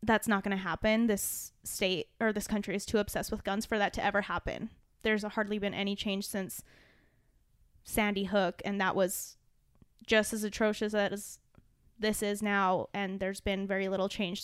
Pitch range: 195-220 Hz